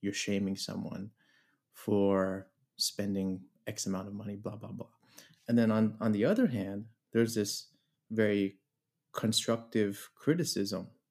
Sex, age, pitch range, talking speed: male, 20-39, 100-125 Hz, 130 wpm